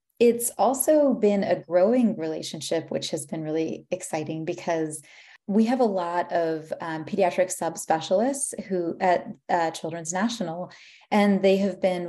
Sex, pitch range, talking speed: female, 165-195 Hz, 145 wpm